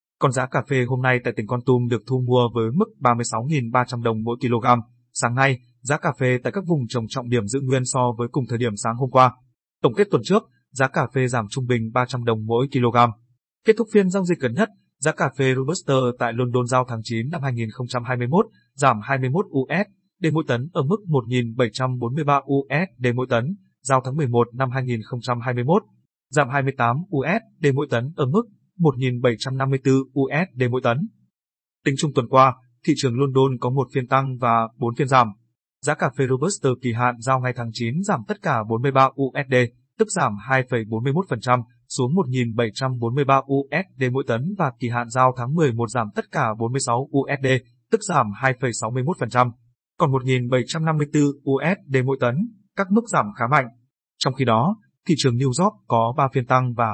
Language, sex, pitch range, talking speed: Vietnamese, male, 120-145 Hz, 185 wpm